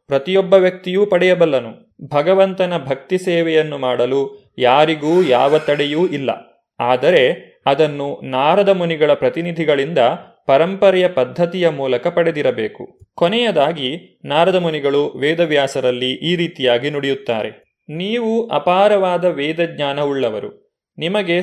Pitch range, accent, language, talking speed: 145-180 Hz, native, Kannada, 90 wpm